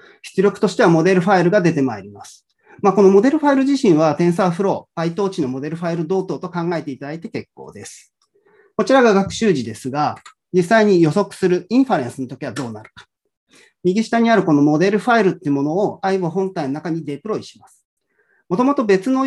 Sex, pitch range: male, 150-205 Hz